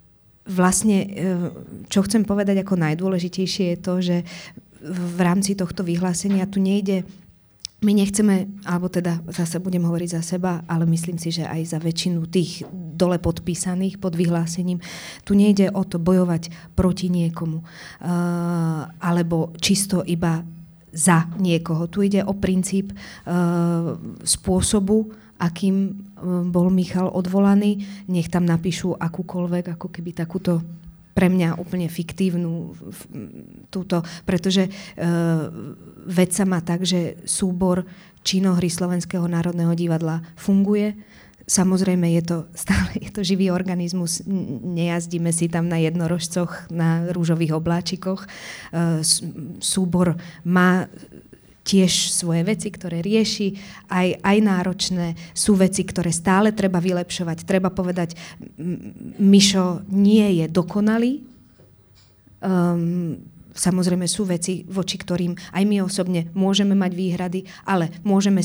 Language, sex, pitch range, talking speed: Slovak, female, 170-190 Hz, 120 wpm